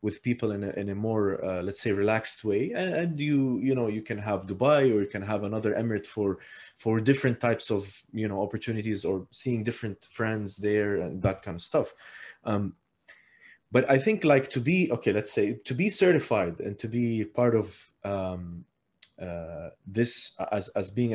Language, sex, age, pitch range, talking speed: English, male, 20-39, 100-125 Hz, 195 wpm